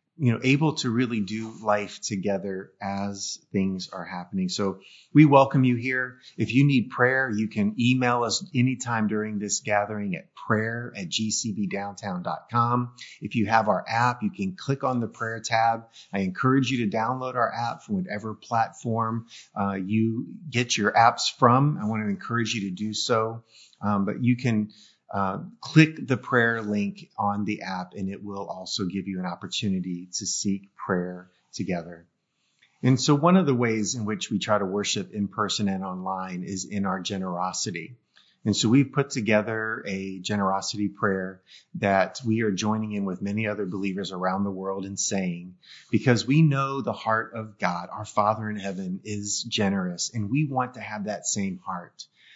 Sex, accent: male, American